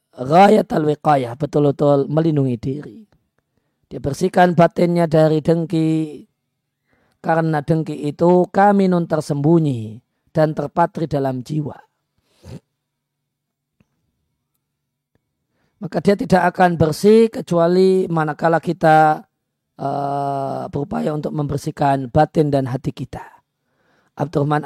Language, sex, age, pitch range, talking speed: Indonesian, male, 40-59, 140-175 Hz, 90 wpm